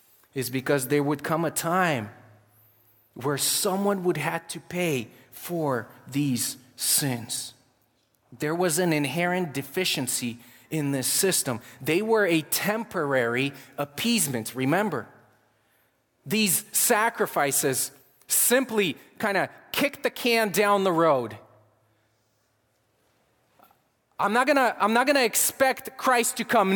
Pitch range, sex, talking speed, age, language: 140-225 Hz, male, 115 wpm, 30-49, English